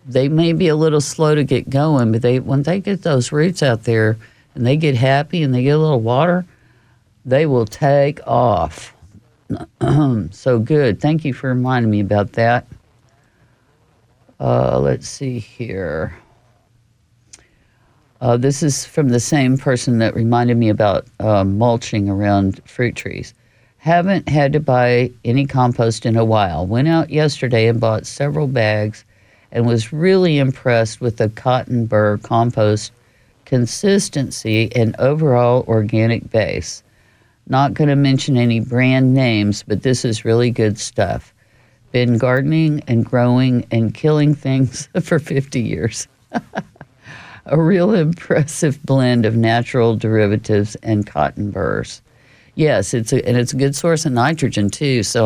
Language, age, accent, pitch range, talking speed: English, 50-69, American, 110-140 Hz, 145 wpm